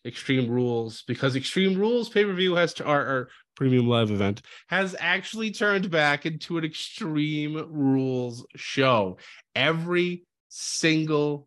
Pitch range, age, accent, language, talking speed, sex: 125-160 Hz, 20-39, American, English, 125 wpm, male